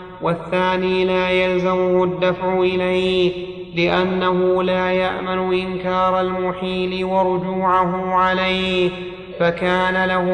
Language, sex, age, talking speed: Arabic, male, 30-49, 80 wpm